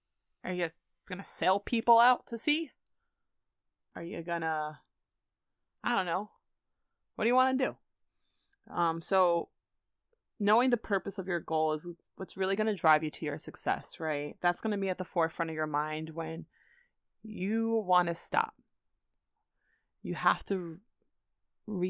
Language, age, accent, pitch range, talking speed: English, 20-39, American, 160-195 Hz, 165 wpm